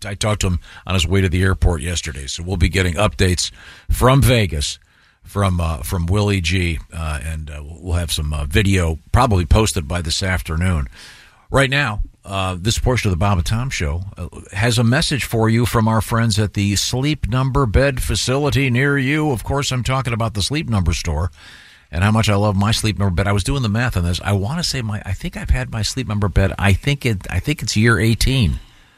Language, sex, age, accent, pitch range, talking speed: English, male, 50-69, American, 90-120 Hz, 230 wpm